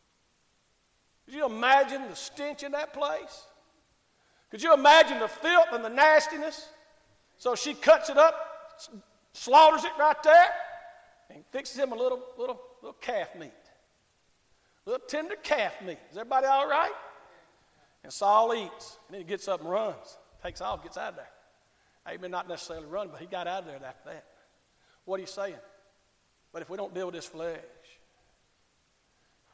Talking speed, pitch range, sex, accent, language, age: 175 wpm, 190-310 Hz, male, American, English, 50-69